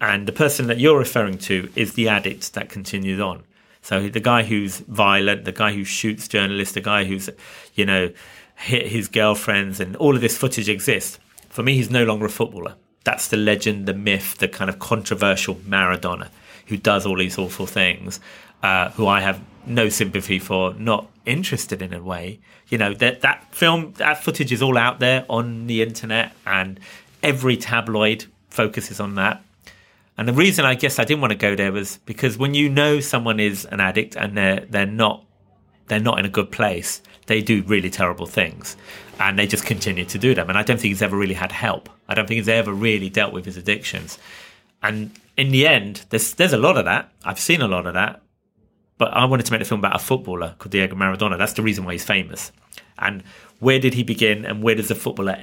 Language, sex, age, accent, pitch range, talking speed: Dutch, male, 40-59, British, 95-115 Hz, 215 wpm